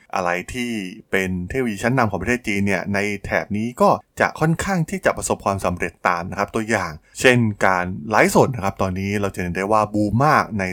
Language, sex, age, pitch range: Thai, male, 20-39, 90-120 Hz